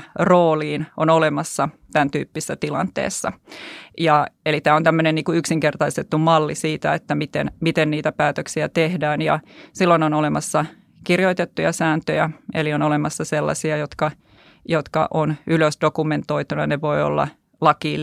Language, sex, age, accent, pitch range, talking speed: Finnish, female, 30-49, native, 150-165 Hz, 125 wpm